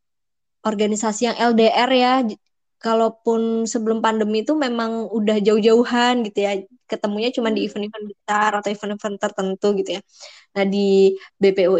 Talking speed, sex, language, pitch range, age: 130 wpm, male, Indonesian, 195-225 Hz, 20-39